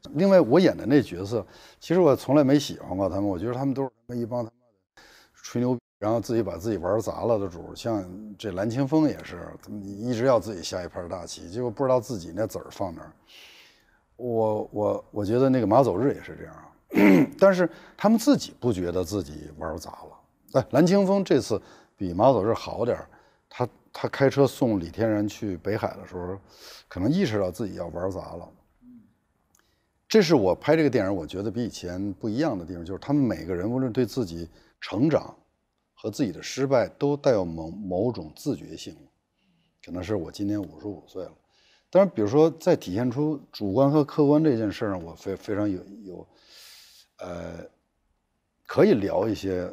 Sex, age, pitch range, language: male, 60-79, 95-145 Hz, Chinese